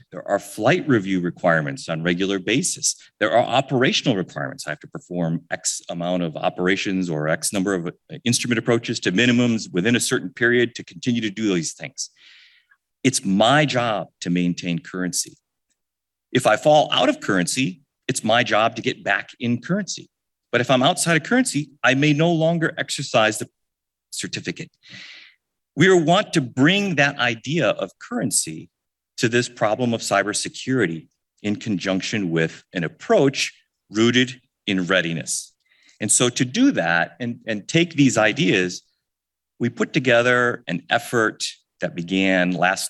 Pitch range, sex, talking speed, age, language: 85-125 Hz, male, 155 wpm, 40-59, English